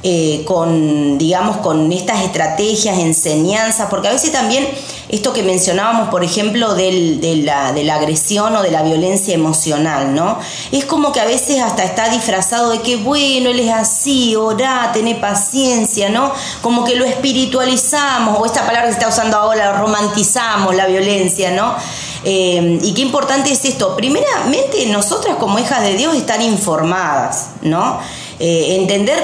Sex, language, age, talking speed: female, Spanish, 20-39, 160 wpm